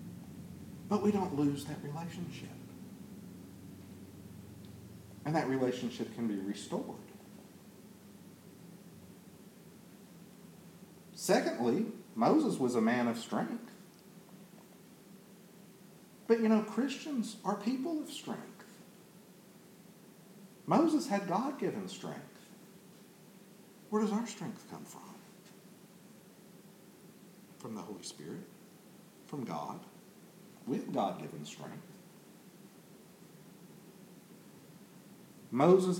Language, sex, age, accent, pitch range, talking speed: English, male, 50-69, American, 180-205 Hz, 80 wpm